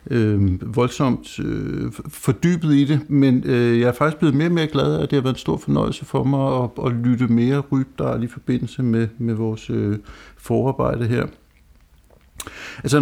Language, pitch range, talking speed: Danish, 115-135 Hz, 185 wpm